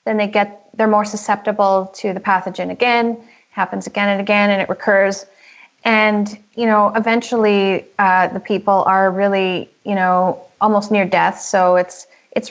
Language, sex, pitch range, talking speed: English, female, 190-230 Hz, 165 wpm